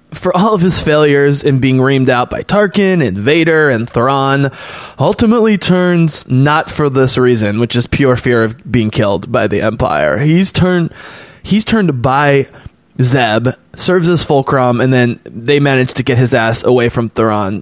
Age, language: 20-39, English